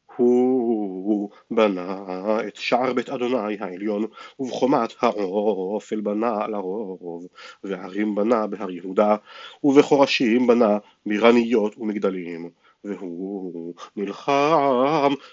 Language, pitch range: Hebrew, 105-130 Hz